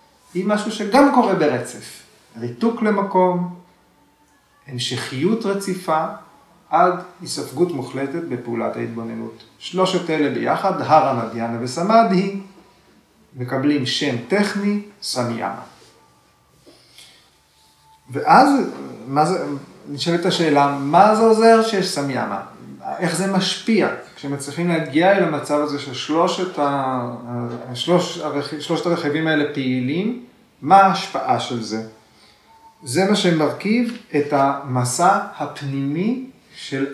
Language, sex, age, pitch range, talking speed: Hebrew, male, 40-59, 125-185 Hz, 90 wpm